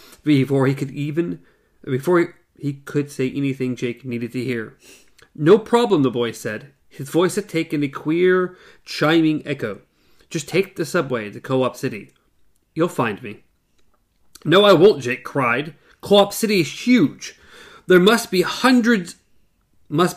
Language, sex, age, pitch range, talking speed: English, male, 30-49, 130-180 Hz, 150 wpm